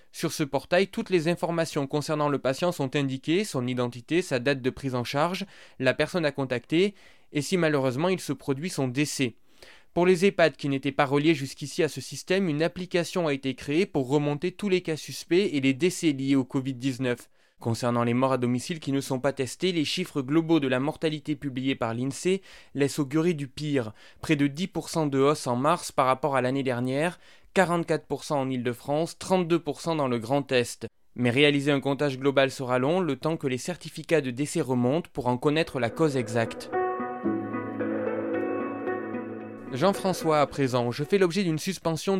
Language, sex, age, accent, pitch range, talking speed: French, male, 20-39, French, 135-165 Hz, 190 wpm